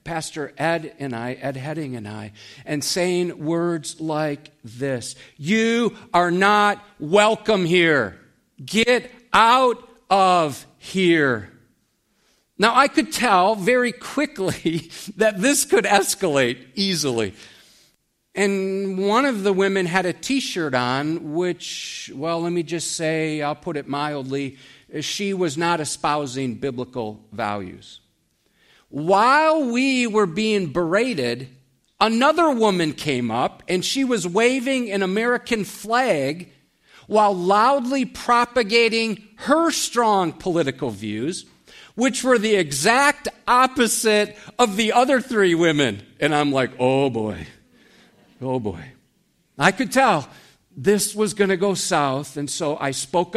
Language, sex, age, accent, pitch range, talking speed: English, male, 50-69, American, 145-220 Hz, 125 wpm